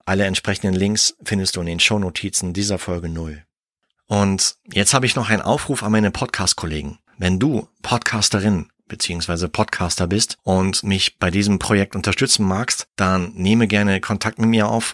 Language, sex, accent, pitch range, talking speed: German, male, German, 95-110 Hz, 165 wpm